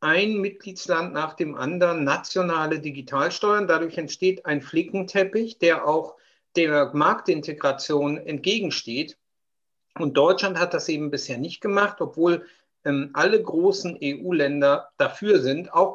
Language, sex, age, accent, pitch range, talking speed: German, male, 50-69, German, 150-205 Hz, 120 wpm